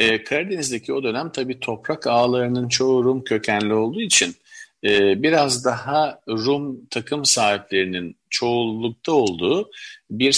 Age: 50-69